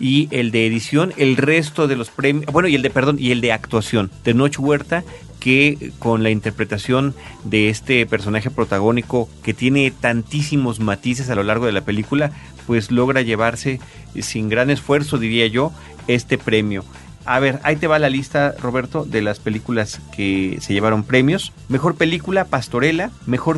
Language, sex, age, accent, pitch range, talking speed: Spanish, male, 40-59, Mexican, 110-140 Hz, 175 wpm